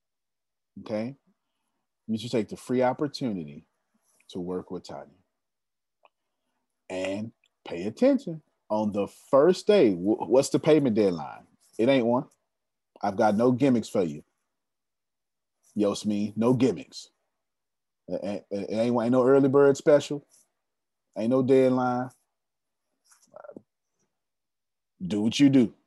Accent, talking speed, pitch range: American, 115 wpm, 110-140 Hz